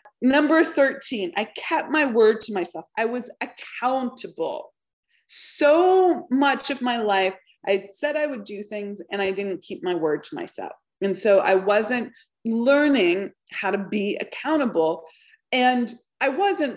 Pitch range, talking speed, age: 205-295 Hz, 150 wpm, 30-49